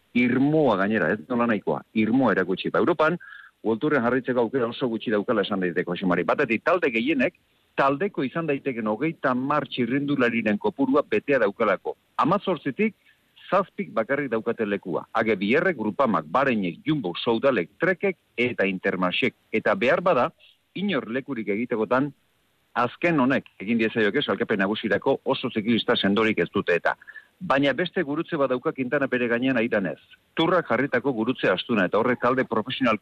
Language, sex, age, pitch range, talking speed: Spanish, male, 50-69, 110-145 Hz, 135 wpm